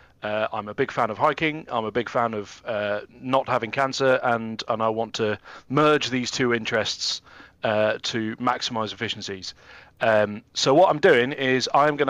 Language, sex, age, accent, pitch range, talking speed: English, male, 40-59, British, 110-135 Hz, 185 wpm